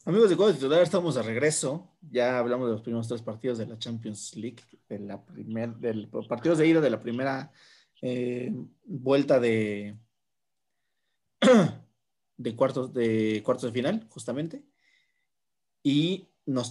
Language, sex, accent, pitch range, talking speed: Spanish, male, Mexican, 120-155 Hz, 140 wpm